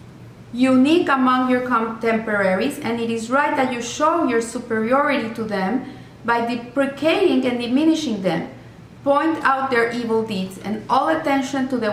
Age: 40-59